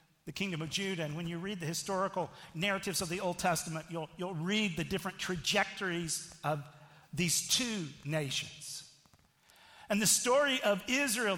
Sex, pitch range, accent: male, 155-195 Hz, American